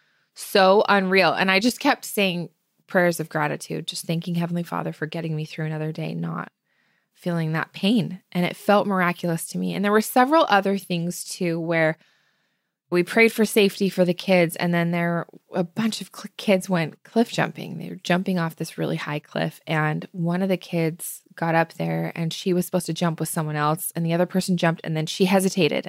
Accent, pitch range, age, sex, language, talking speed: American, 165-195 Hz, 20-39, female, English, 205 wpm